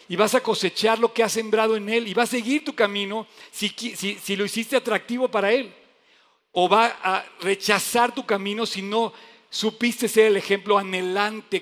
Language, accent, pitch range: Spanish, Mexican, 185-225 Hz